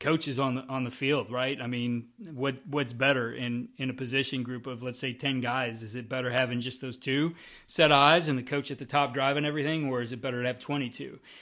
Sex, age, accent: male, 30-49, American